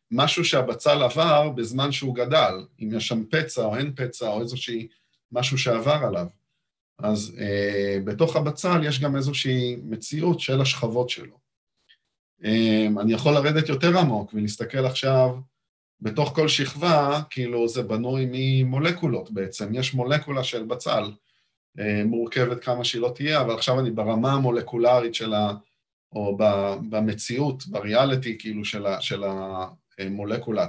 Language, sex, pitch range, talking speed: Hebrew, male, 110-140 Hz, 140 wpm